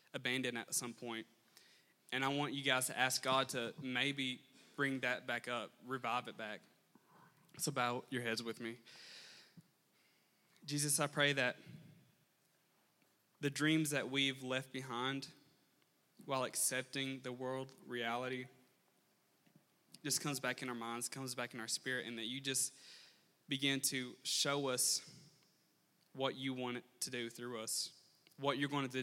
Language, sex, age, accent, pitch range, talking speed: English, male, 20-39, American, 125-140 Hz, 150 wpm